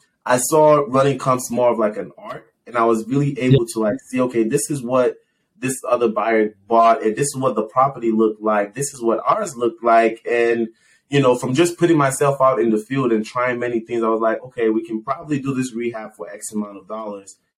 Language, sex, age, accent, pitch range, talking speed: English, male, 20-39, American, 110-130 Hz, 235 wpm